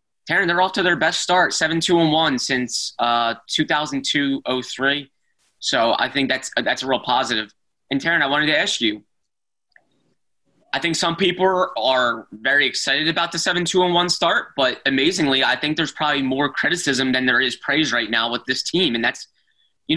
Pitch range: 125-170 Hz